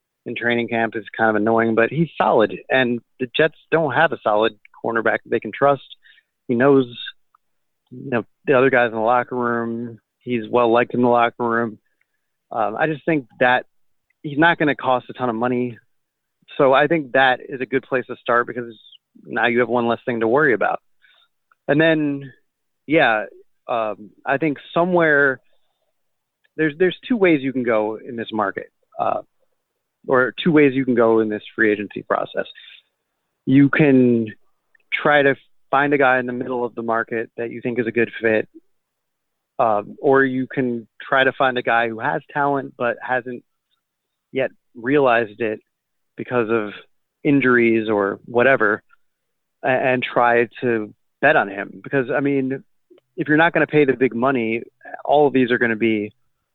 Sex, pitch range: male, 115-140 Hz